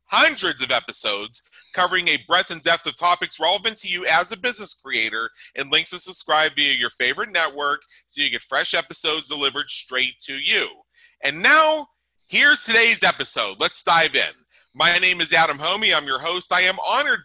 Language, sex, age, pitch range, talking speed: English, male, 40-59, 145-185 Hz, 185 wpm